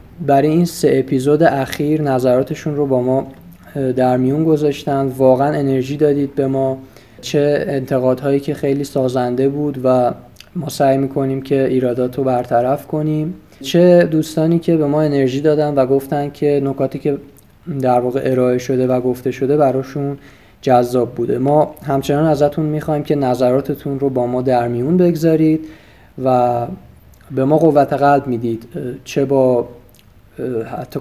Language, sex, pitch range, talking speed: Persian, male, 125-150 Hz, 140 wpm